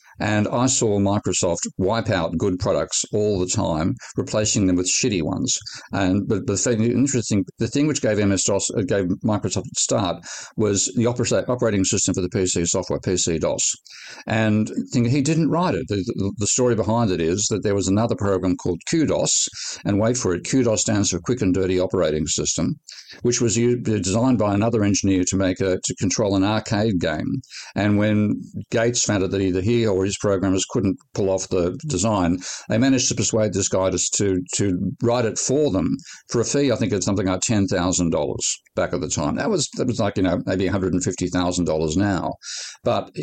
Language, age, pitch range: English, 50-69, 95-115 Hz